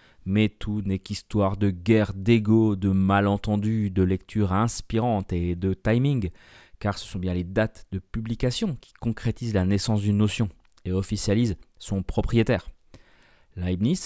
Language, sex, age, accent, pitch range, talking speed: French, male, 30-49, French, 95-115 Hz, 145 wpm